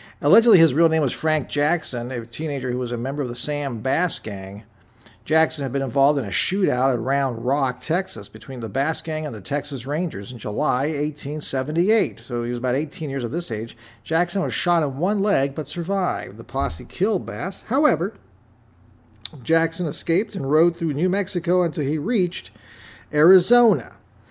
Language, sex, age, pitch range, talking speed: English, male, 50-69, 120-170 Hz, 180 wpm